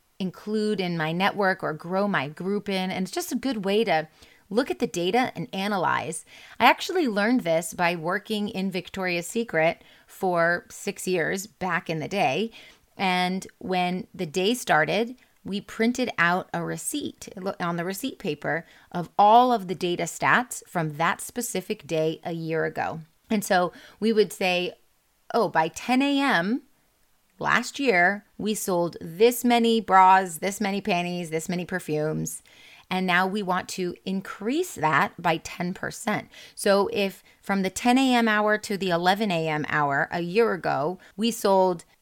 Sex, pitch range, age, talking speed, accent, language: female, 170-220 Hz, 30-49, 160 wpm, American, English